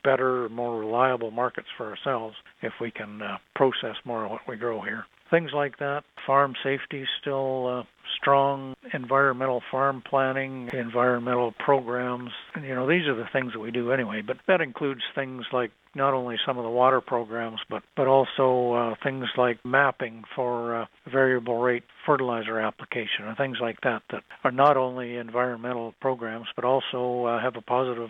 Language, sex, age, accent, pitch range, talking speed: English, male, 50-69, American, 120-135 Hz, 175 wpm